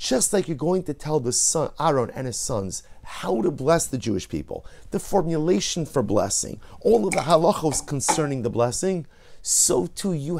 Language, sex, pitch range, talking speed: English, male, 90-140 Hz, 185 wpm